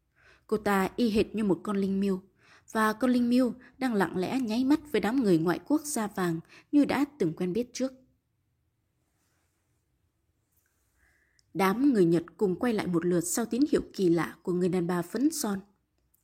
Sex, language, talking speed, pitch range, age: female, Vietnamese, 185 wpm, 185-240 Hz, 20-39